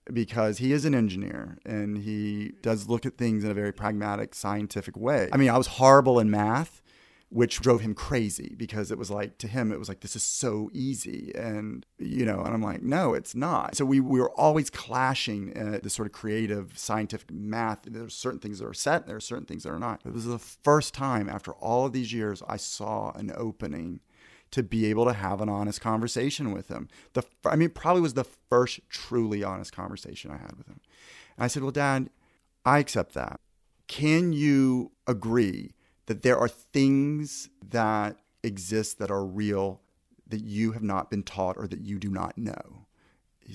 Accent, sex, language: American, male, English